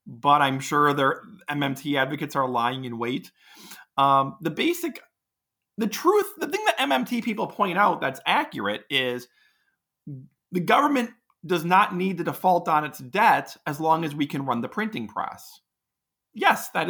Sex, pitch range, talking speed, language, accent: male, 145-195 Hz, 165 wpm, English, American